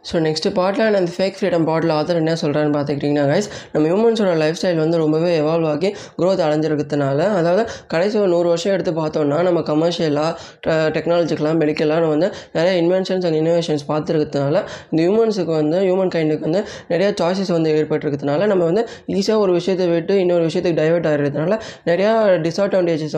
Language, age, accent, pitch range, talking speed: Tamil, 20-39, native, 155-185 Hz, 160 wpm